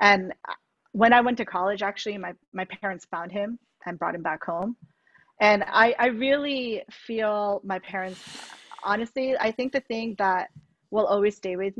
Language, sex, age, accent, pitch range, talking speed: English, female, 30-49, American, 185-230 Hz, 175 wpm